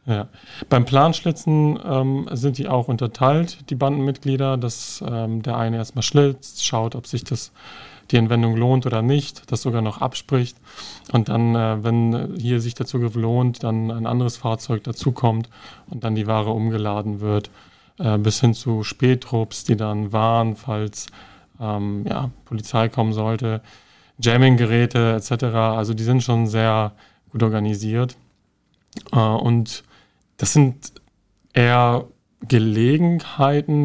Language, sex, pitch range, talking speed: German, male, 110-125 Hz, 140 wpm